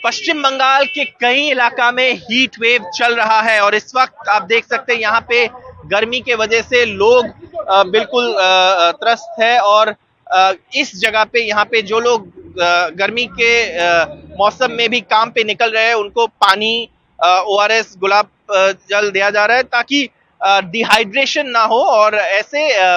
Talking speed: 160 wpm